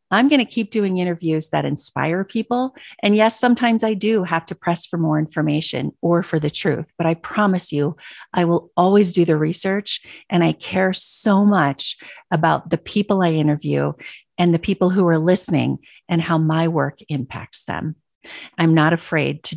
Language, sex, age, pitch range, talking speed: English, female, 40-59, 155-195 Hz, 185 wpm